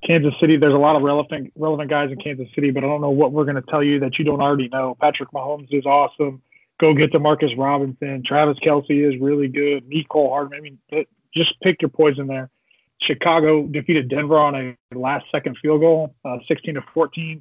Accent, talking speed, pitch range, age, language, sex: American, 215 wpm, 135-150 Hz, 20-39, English, male